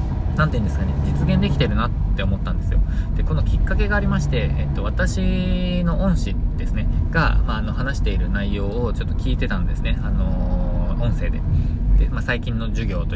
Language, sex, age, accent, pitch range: Japanese, male, 20-39, native, 80-110 Hz